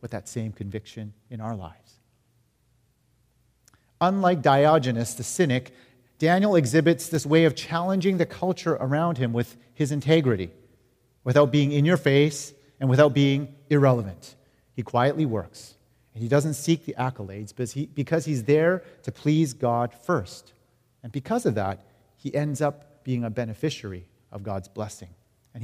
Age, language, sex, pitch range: 40-59, English, male, 120-145 Hz